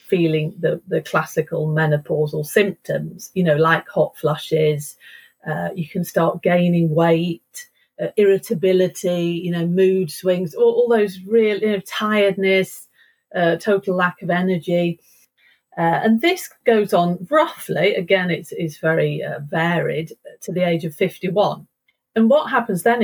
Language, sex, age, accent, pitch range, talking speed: English, female, 40-59, British, 165-215 Hz, 145 wpm